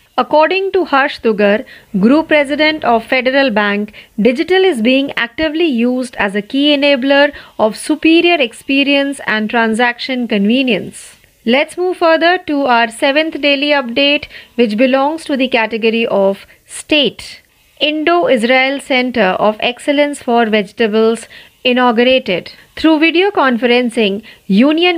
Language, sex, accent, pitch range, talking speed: Marathi, female, native, 225-295 Hz, 125 wpm